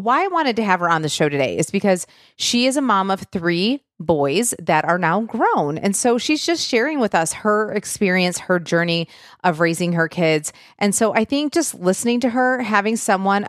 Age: 30-49